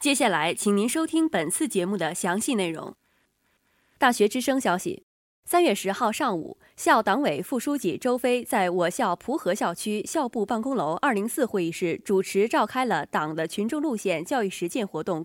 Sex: female